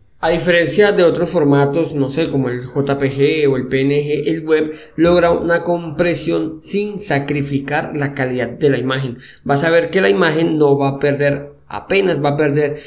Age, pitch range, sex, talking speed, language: 20-39, 140-170 Hz, male, 180 wpm, Spanish